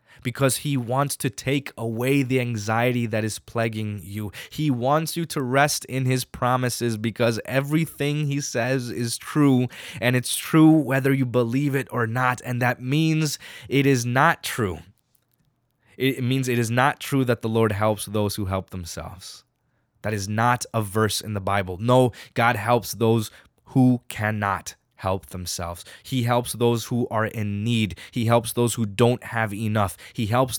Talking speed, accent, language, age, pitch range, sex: 175 wpm, American, English, 20-39, 110-135 Hz, male